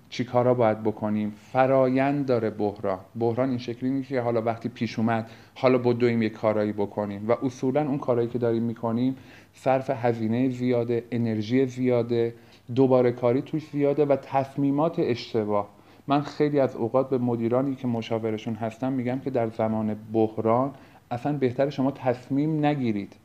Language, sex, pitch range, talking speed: Persian, male, 115-135 Hz, 150 wpm